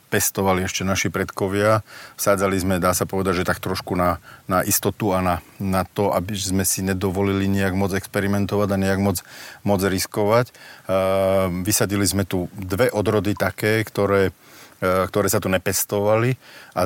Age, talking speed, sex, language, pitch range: 40-59, 160 wpm, male, Slovak, 95-105 Hz